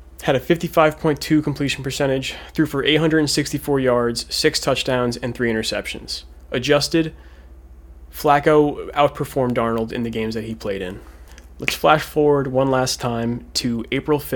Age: 20-39